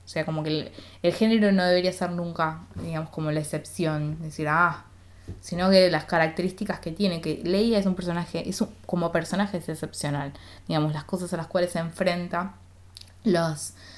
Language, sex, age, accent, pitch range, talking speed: Spanish, female, 20-39, Argentinian, 150-175 Hz, 190 wpm